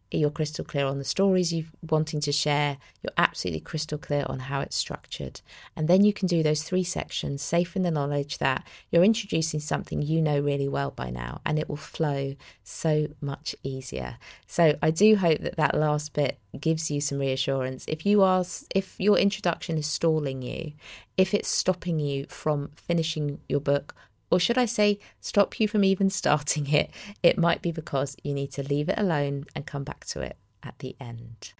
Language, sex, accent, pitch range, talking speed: English, female, British, 140-175 Hz, 195 wpm